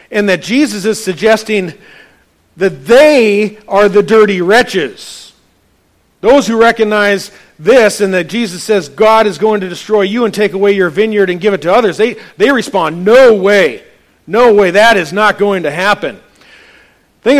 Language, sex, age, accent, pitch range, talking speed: English, male, 40-59, American, 180-215 Hz, 170 wpm